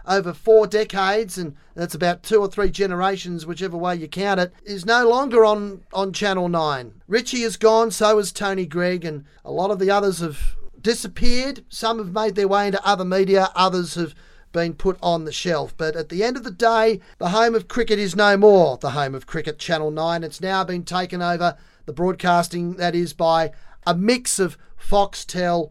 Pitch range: 175-220 Hz